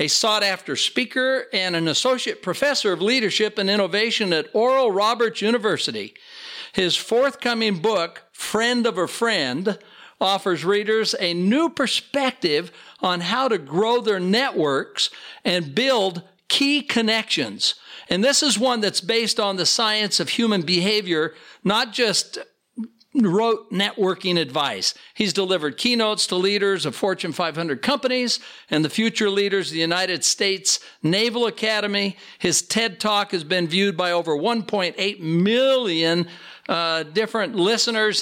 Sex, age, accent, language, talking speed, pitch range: male, 60-79, American, English, 135 wpm, 180-230 Hz